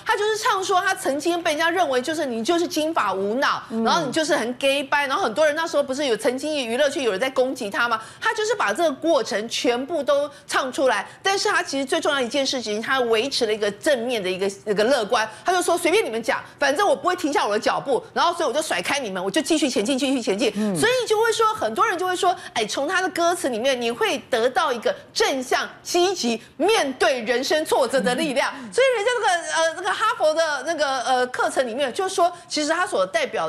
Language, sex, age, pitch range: Chinese, female, 40-59, 250-350 Hz